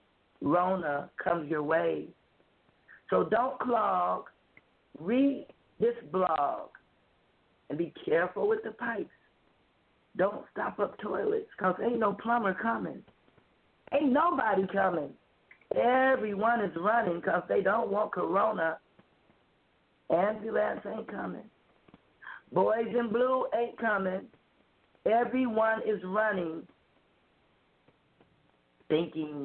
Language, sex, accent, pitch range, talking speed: English, female, American, 145-235 Hz, 100 wpm